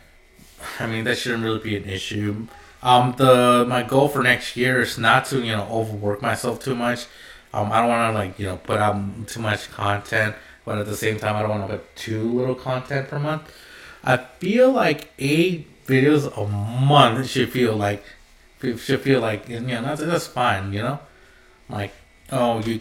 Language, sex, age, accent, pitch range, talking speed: English, male, 20-39, American, 105-130 Hz, 200 wpm